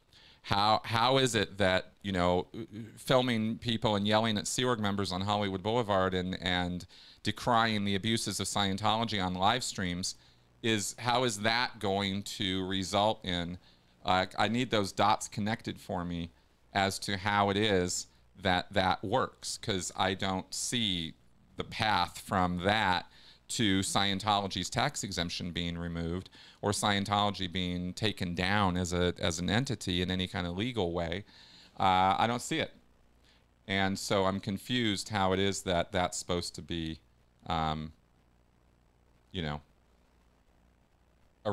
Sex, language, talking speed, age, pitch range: male, English, 150 wpm, 40-59, 85-105 Hz